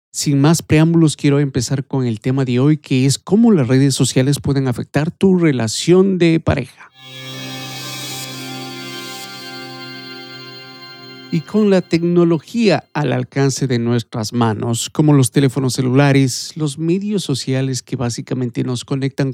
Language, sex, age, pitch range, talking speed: Spanish, male, 50-69, 125-150 Hz, 130 wpm